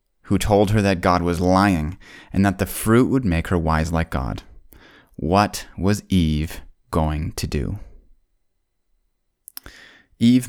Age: 30-49